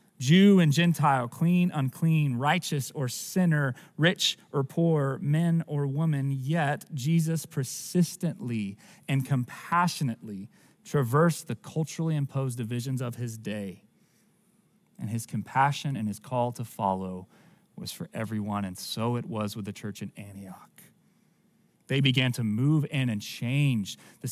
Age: 30-49